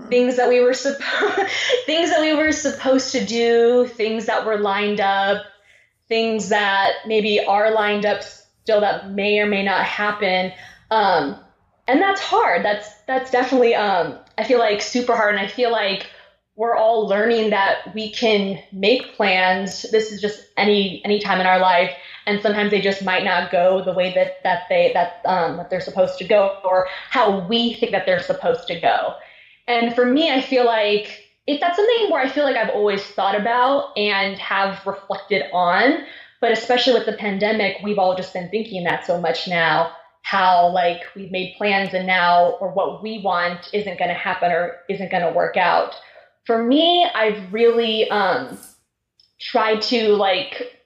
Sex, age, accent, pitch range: female, 20-39, American, 185-235 Hz